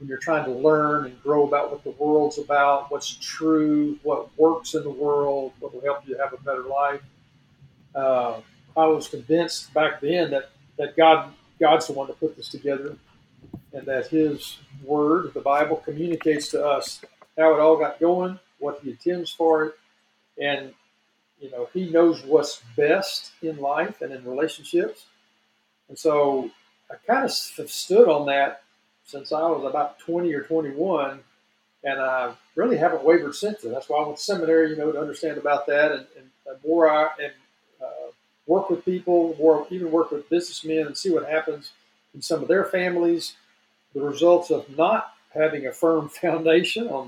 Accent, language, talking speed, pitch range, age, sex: American, English, 175 wpm, 140-165 Hz, 50-69, male